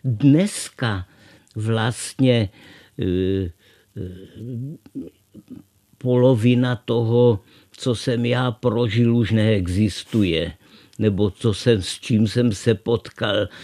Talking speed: 80 wpm